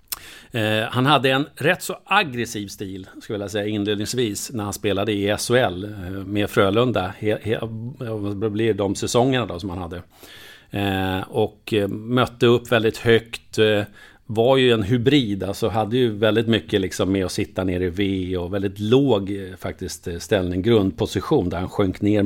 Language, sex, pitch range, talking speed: English, male, 100-115 Hz, 155 wpm